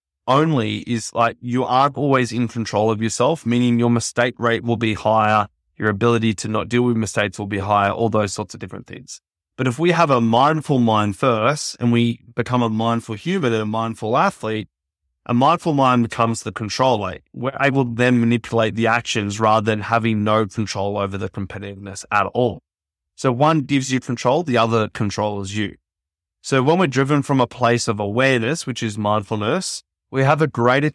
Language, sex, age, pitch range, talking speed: English, male, 20-39, 105-130 Hz, 190 wpm